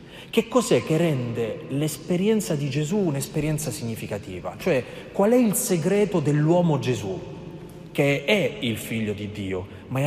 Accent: native